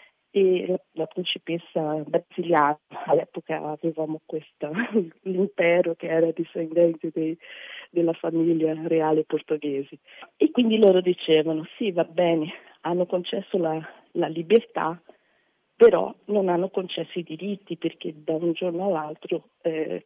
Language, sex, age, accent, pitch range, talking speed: Italian, female, 40-59, native, 165-195 Hz, 120 wpm